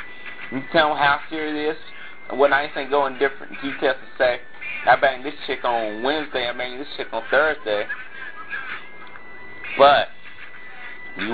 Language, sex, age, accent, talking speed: English, male, 30-49, American, 160 wpm